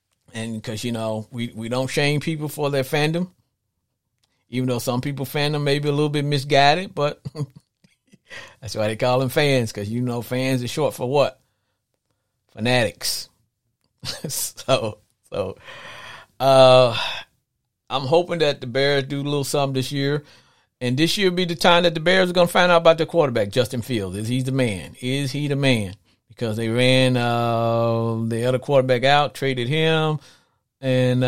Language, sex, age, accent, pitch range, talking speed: English, male, 50-69, American, 115-145 Hz, 175 wpm